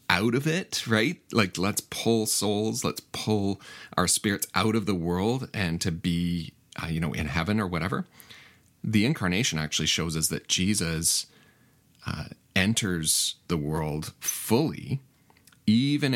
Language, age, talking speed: English, 40-59, 145 wpm